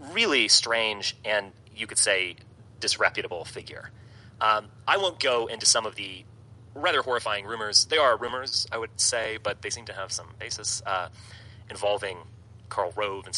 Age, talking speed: 30-49, 165 wpm